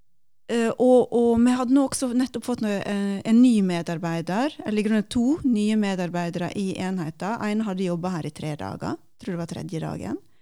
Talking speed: 185 wpm